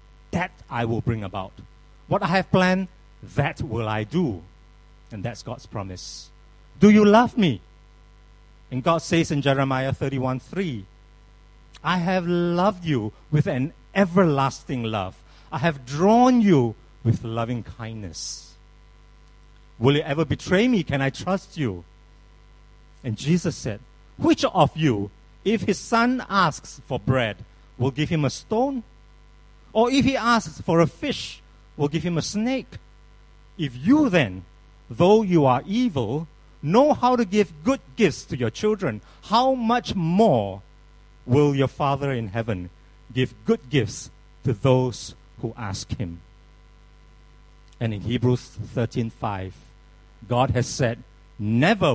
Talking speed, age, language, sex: 140 wpm, 50-69, English, male